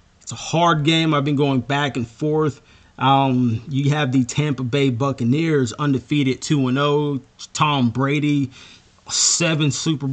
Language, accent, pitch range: English, American, 130-150 Hz